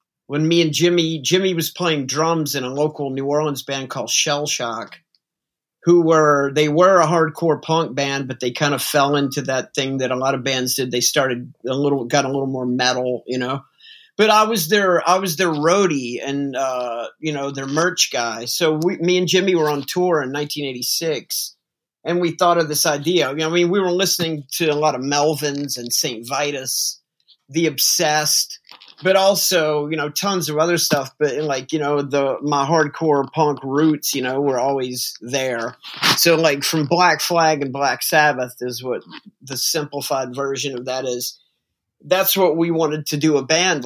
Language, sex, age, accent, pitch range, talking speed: English, male, 50-69, American, 135-165 Hz, 195 wpm